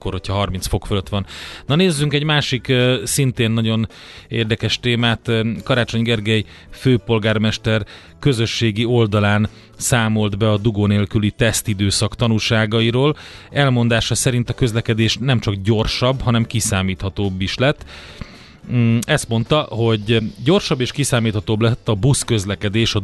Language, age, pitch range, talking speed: Hungarian, 30-49, 100-125 Hz, 120 wpm